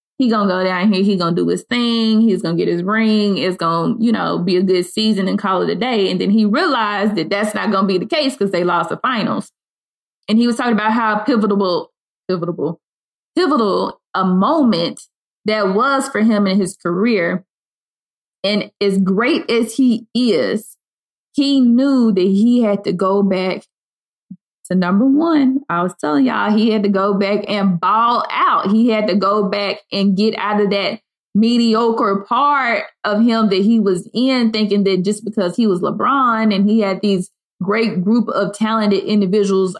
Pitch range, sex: 195-230 Hz, female